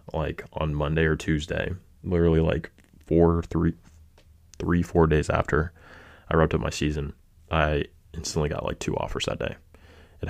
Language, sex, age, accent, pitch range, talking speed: English, male, 20-39, American, 80-85 Hz, 155 wpm